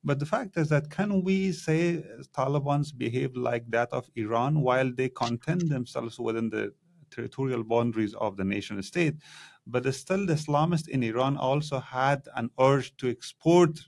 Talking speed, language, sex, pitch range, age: 160 wpm, English, male, 115-150 Hz, 30-49